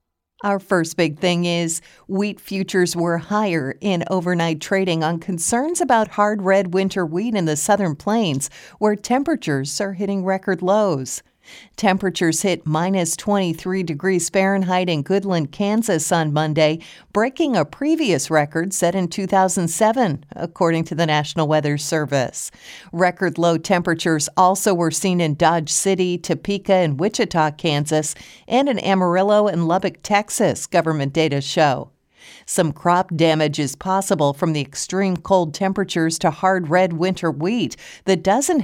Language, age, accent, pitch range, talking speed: English, 50-69, American, 160-195 Hz, 145 wpm